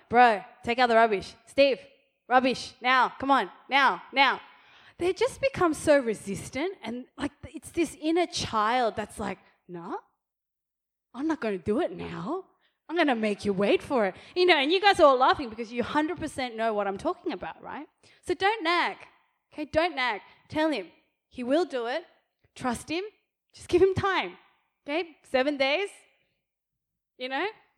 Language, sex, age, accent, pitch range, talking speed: English, female, 20-39, Australian, 195-300 Hz, 175 wpm